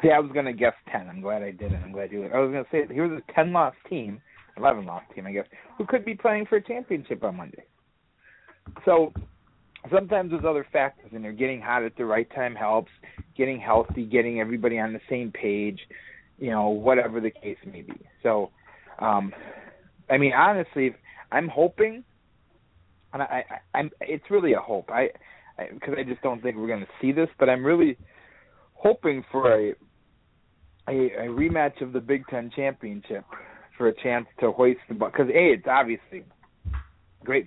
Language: English